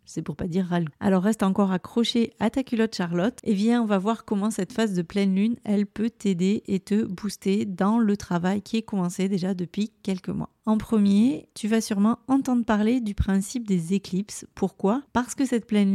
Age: 30-49